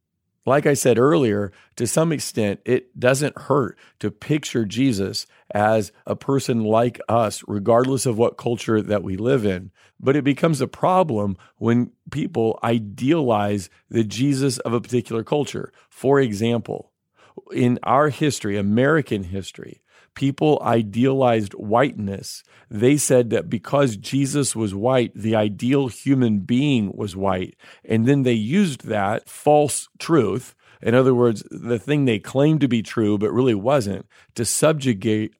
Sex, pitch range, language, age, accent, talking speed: male, 105-135 Hz, English, 40-59, American, 140 wpm